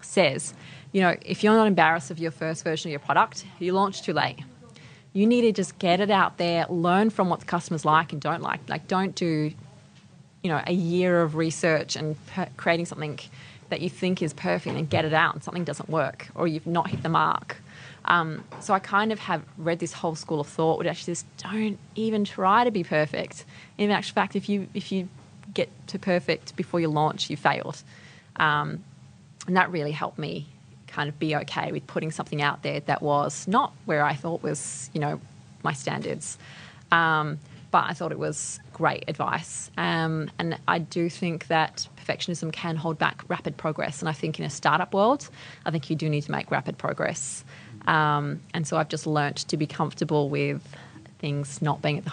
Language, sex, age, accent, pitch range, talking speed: English, female, 20-39, Australian, 150-180 Hz, 205 wpm